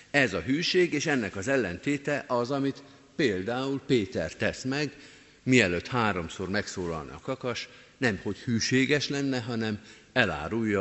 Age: 50-69